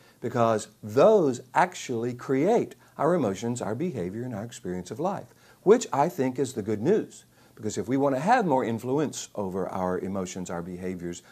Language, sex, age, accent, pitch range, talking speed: English, male, 60-79, American, 100-160 Hz, 175 wpm